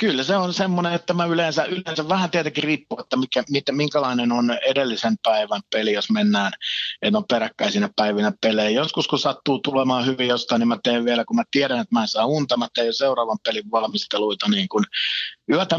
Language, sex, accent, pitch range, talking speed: Finnish, male, native, 115-160 Hz, 200 wpm